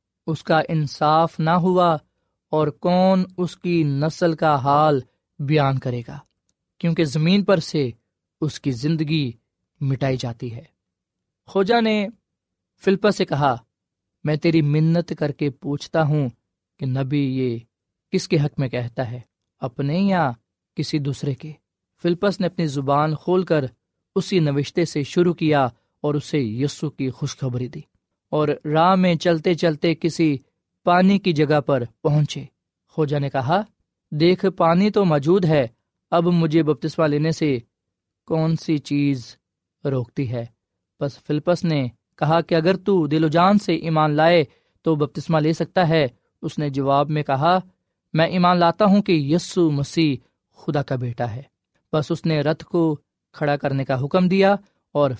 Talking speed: 155 wpm